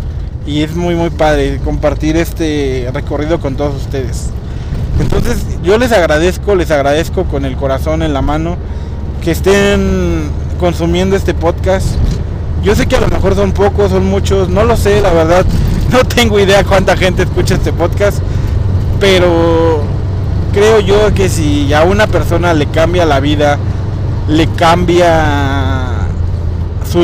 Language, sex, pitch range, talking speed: Spanish, male, 85-100 Hz, 145 wpm